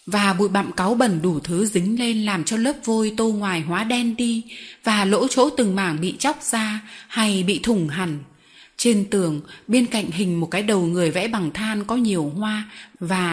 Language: Vietnamese